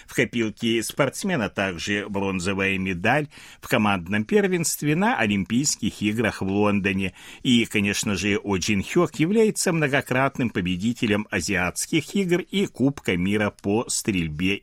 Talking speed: 120 wpm